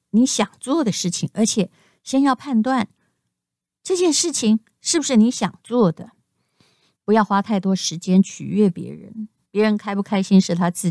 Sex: female